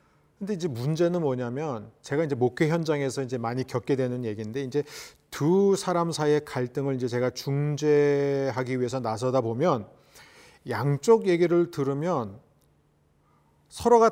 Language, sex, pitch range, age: Korean, male, 135-190 Hz, 40-59